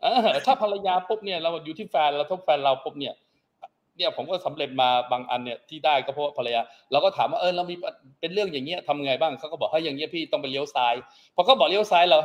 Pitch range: 140-205 Hz